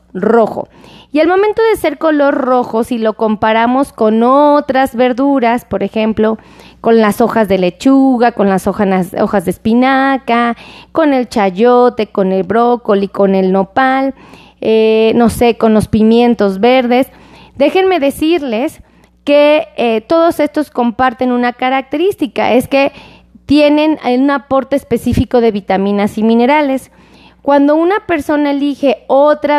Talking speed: 135 wpm